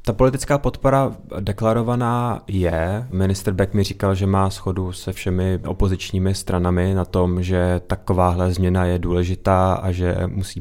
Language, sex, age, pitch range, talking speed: Czech, male, 20-39, 90-100 Hz, 145 wpm